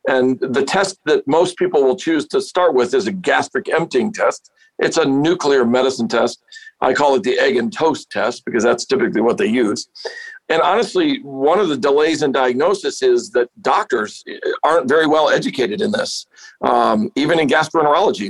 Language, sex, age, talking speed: English, male, 50-69, 185 wpm